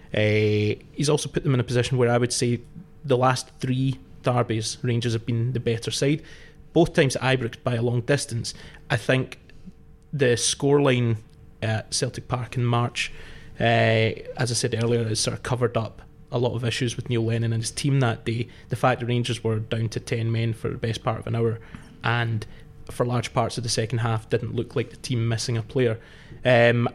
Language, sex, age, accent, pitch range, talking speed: English, male, 20-39, British, 115-130 Hz, 210 wpm